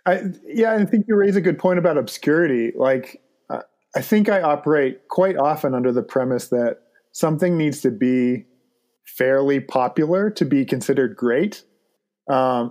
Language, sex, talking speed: English, male, 155 wpm